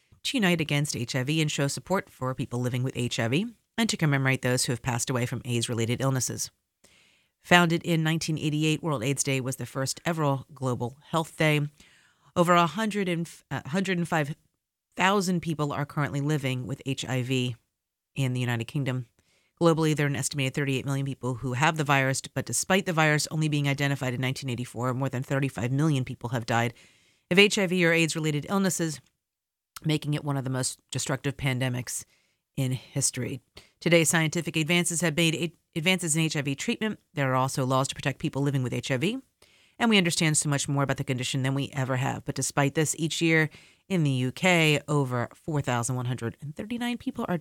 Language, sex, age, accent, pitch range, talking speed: English, female, 40-59, American, 130-170 Hz, 170 wpm